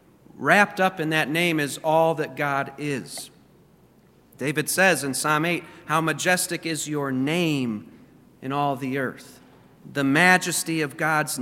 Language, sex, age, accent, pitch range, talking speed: English, male, 40-59, American, 145-175 Hz, 145 wpm